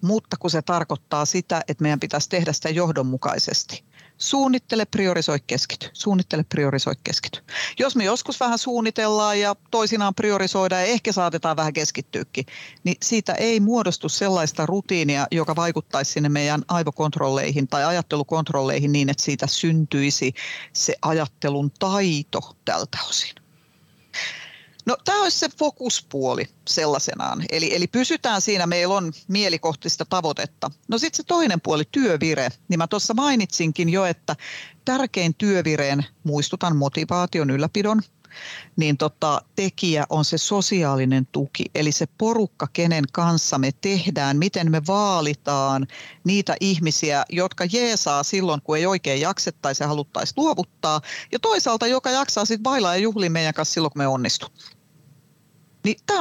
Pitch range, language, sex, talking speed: 150-205 Hz, Finnish, female, 135 wpm